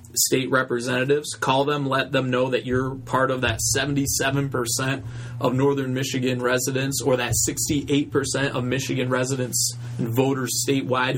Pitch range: 120-140 Hz